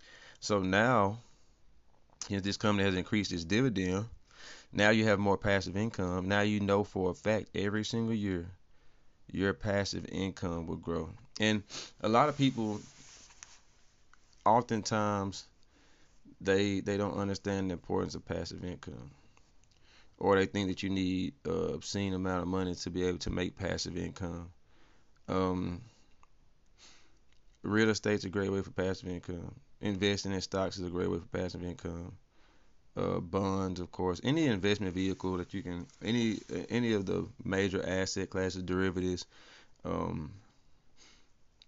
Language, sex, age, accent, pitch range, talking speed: English, male, 30-49, American, 90-100 Hz, 150 wpm